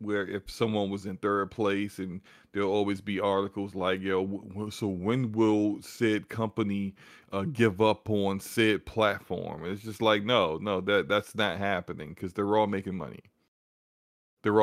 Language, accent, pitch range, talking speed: English, American, 95-110 Hz, 165 wpm